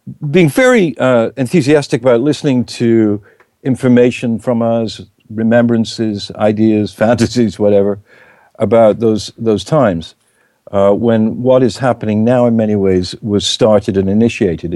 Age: 60-79